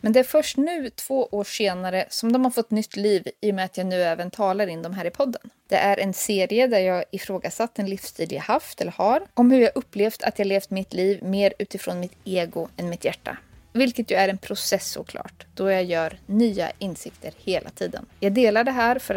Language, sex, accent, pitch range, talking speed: Swedish, female, native, 195-250 Hz, 230 wpm